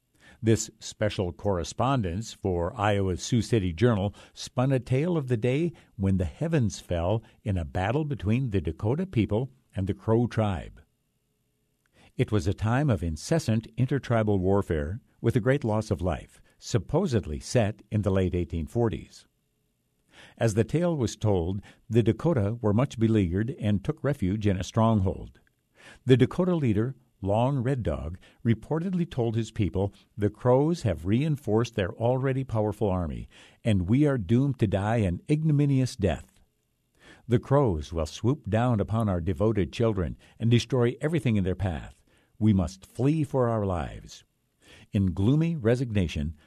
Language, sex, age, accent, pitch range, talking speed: English, male, 60-79, American, 95-125 Hz, 150 wpm